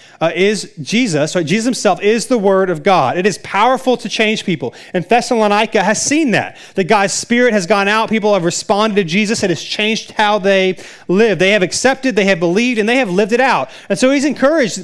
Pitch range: 185-230 Hz